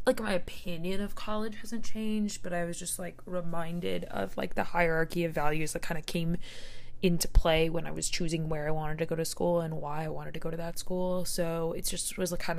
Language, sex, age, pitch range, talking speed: English, female, 20-39, 160-175 Hz, 245 wpm